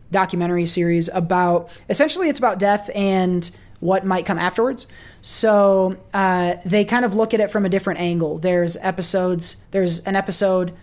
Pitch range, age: 170-205 Hz, 20-39